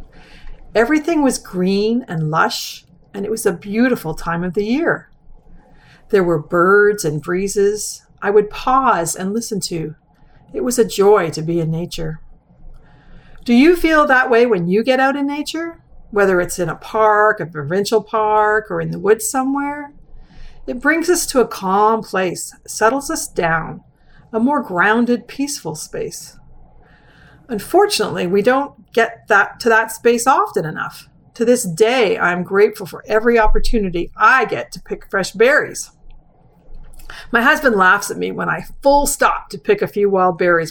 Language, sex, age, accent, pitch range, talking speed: English, female, 50-69, American, 190-280 Hz, 165 wpm